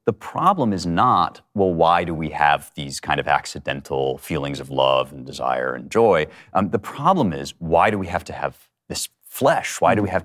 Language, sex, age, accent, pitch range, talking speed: English, male, 30-49, American, 75-110 Hz, 210 wpm